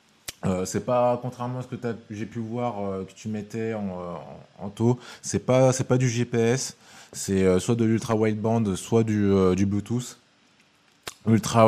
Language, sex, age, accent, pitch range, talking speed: French, male, 20-39, French, 95-115 Hz, 155 wpm